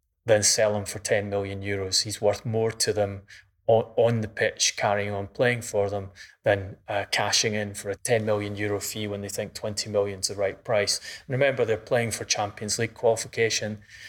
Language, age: English, 20-39